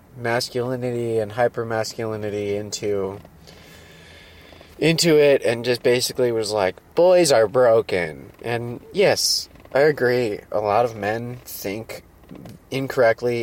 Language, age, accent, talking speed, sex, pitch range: English, 20-39, American, 105 wpm, male, 100-125 Hz